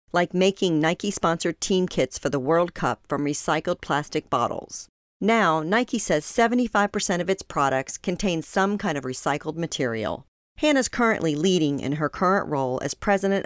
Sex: female